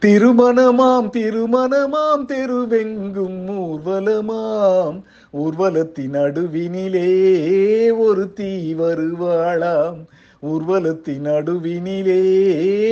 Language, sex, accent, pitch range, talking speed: Tamil, male, native, 185-245 Hz, 45 wpm